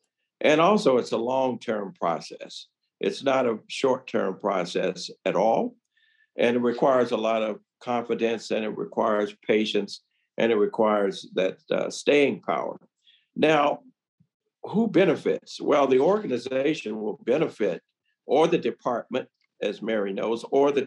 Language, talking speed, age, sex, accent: English, 135 wpm, 60-79, male, American